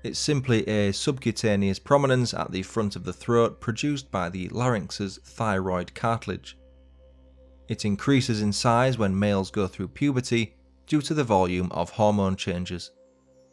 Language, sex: English, male